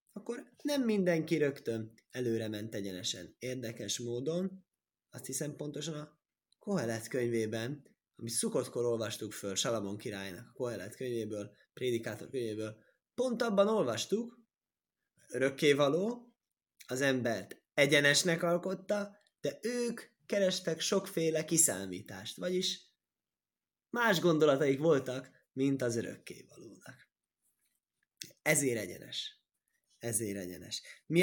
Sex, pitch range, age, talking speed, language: male, 110-160 Hz, 20-39, 95 wpm, Hungarian